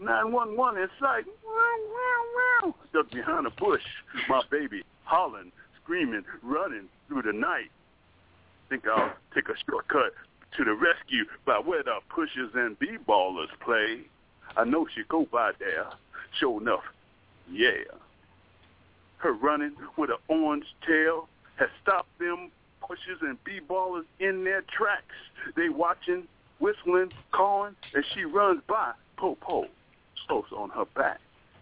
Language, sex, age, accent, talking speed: English, male, 60-79, American, 130 wpm